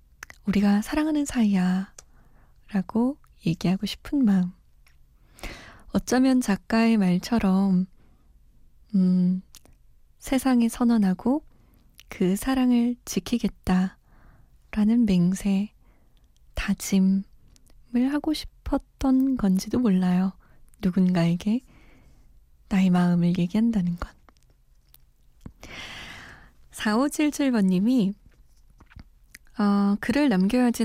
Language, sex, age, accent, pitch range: Korean, female, 20-39, native, 190-240 Hz